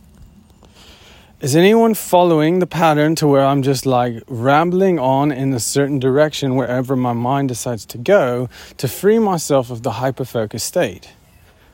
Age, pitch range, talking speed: 30-49, 120-170 Hz, 150 wpm